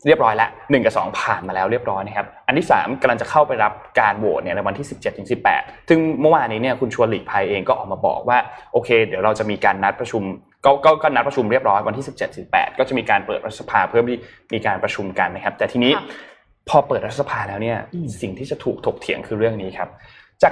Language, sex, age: Thai, male, 20-39